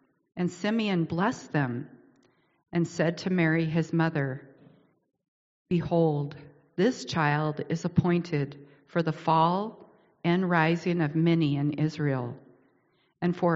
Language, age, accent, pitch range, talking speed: English, 50-69, American, 150-180 Hz, 115 wpm